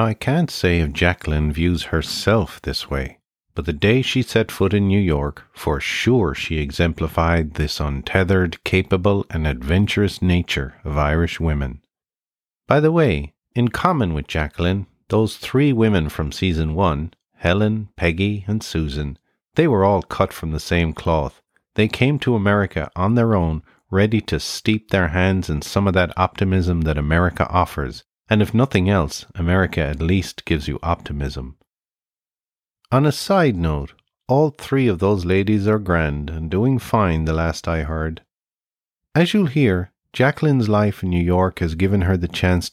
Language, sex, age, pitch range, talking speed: English, male, 50-69, 80-110 Hz, 165 wpm